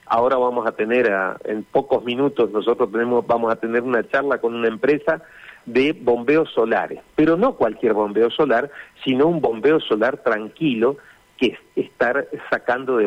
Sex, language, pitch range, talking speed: male, Spanish, 120-165 Hz, 165 wpm